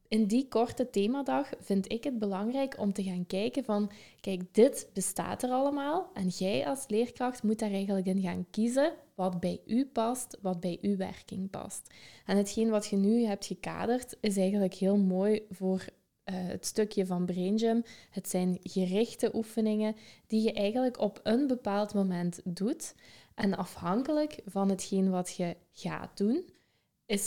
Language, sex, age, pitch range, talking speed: Dutch, female, 20-39, 190-235 Hz, 165 wpm